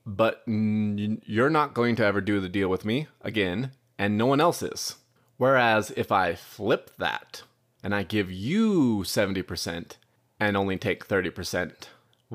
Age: 20-39